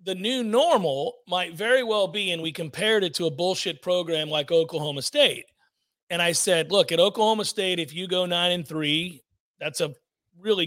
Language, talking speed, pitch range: English, 190 wpm, 170-230 Hz